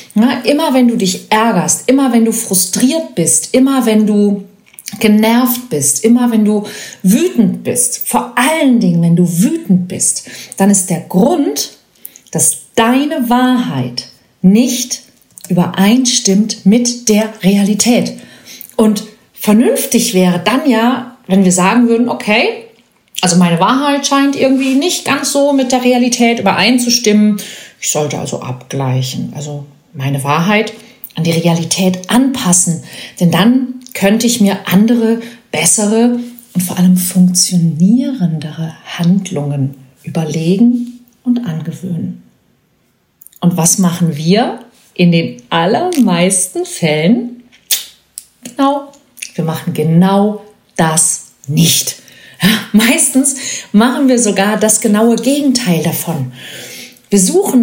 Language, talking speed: German, 115 wpm